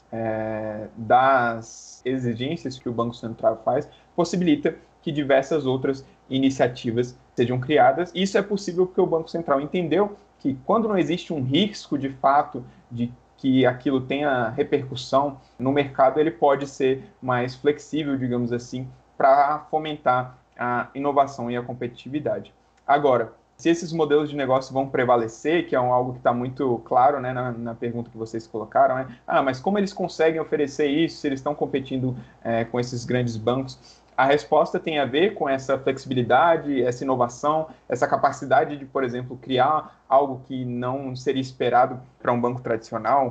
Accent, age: Brazilian, 20-39